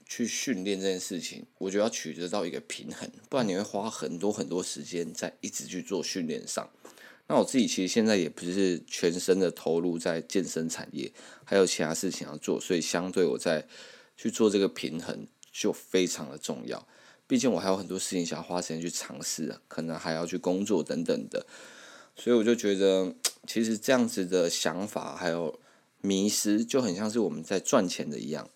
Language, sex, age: Chinese, male, 20-39